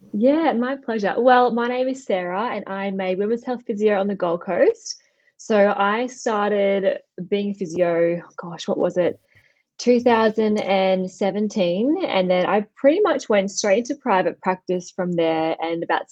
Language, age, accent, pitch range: English, 10-29, Australian, 180-215 Hz